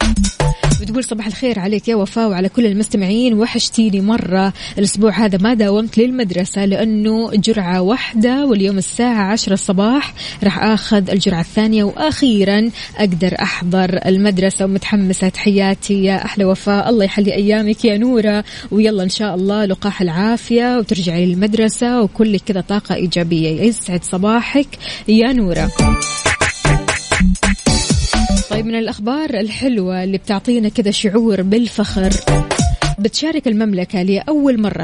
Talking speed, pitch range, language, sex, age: 120 wpm, 190-225 Hz, Arabic, female, 20-39